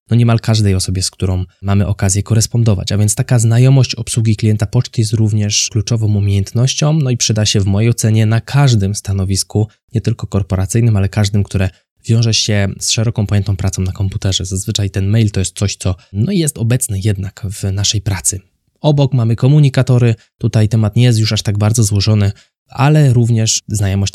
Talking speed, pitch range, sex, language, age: 180 wpm, 100-120 Hz, male, Polish, 20-39